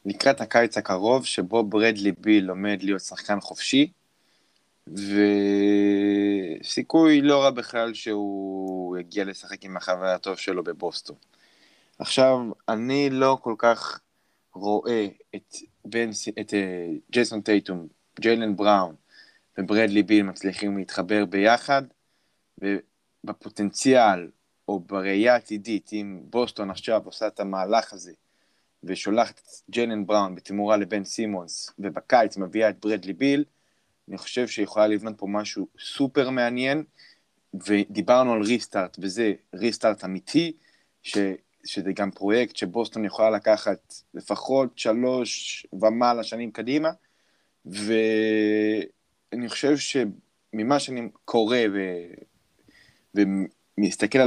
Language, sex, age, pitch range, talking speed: Hebrew, male, 20-39, 100-120 Hz, 105 wpm